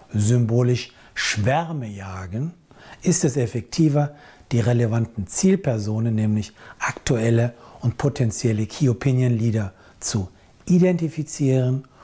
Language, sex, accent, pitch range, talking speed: German, male, German, 115-155 Hz, 80 wpm